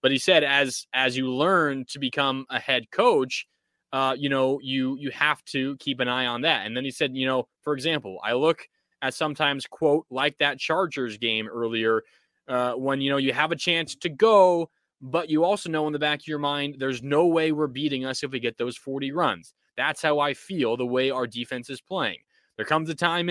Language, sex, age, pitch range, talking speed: English, male, 20-39, 135-170 Hz, 225 wpm